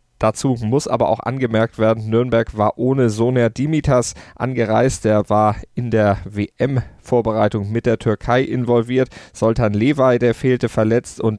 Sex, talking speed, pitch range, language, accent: male, 140 wpm, 100-120 Hz, German, German